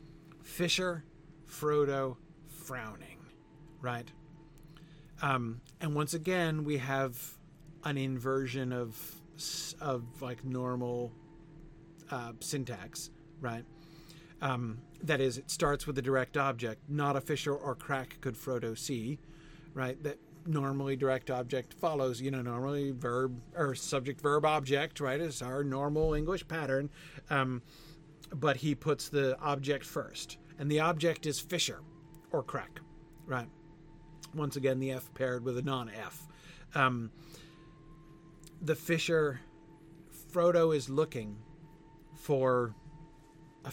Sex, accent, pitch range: male, American, 135-160 Hz